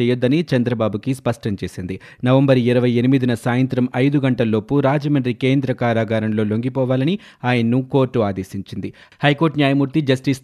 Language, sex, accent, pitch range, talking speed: Telugu, male, native, 120-140 Hz, 110 wpm